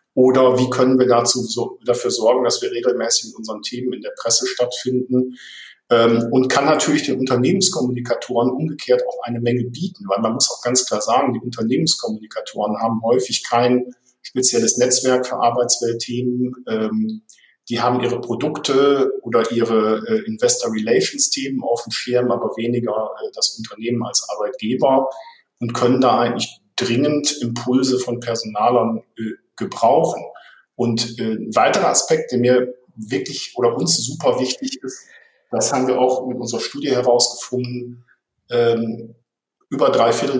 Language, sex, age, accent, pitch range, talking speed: German, male, 50-69, German, 120-135 Hz, 145 wpm